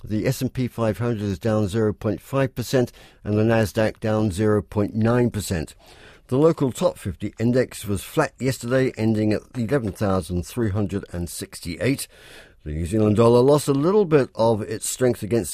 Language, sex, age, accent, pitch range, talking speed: English, male, 50-69, British, 105-130 Hz, 130 wpm